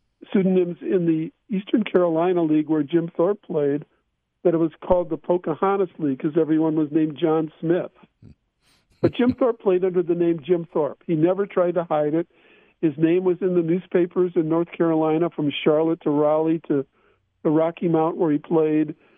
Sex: male